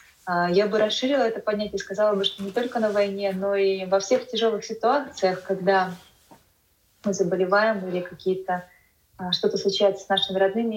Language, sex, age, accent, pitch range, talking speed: Russian, female, 20-39, native, 185-210 Hz, 160 wpm